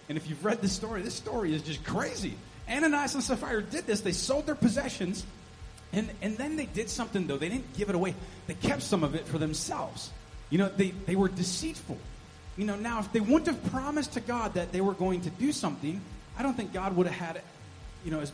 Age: 30-49